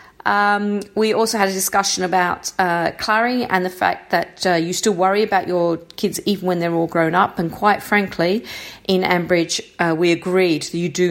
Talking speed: 200 wpm